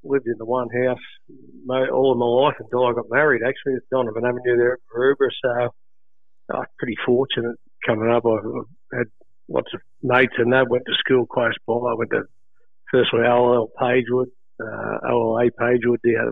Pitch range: 120-135 Hz